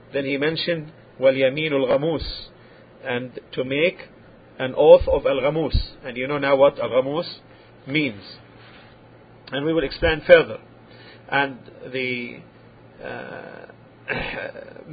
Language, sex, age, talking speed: English, male, 50-69, 110 wpm